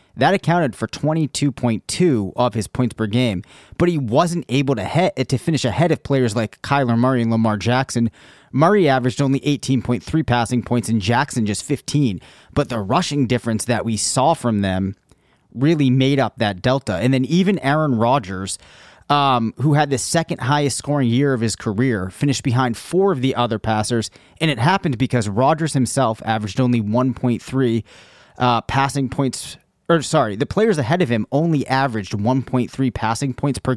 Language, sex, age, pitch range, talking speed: English, male, 30-49, 110-140 Hz, 175 wpm